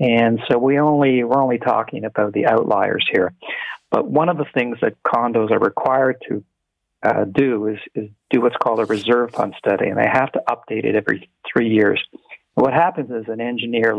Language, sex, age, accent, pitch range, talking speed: English, male, 50-69, American, 110-125 Hz, 200 wpm